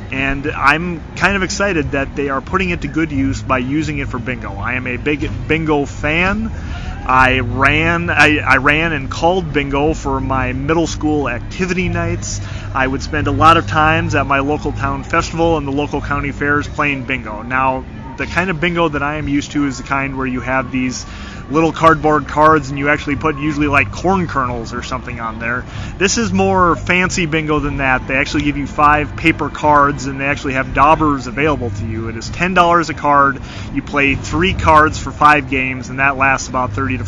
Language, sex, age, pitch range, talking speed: English, male, 30-49, 125-150 Hz, 210 wpm